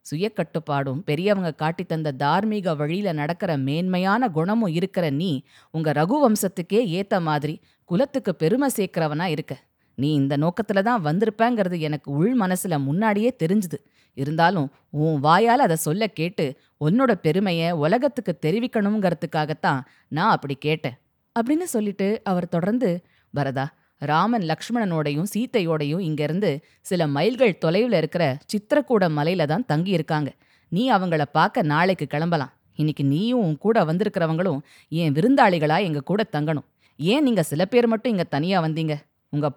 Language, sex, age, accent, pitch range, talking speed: Tamil, female, 20-39, native, 150-205 Hz, 125 wpm